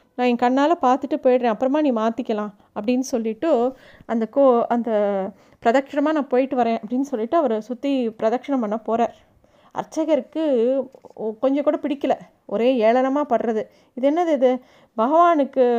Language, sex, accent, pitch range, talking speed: Tamil, female, native, 235-295 Hz, 135 wpm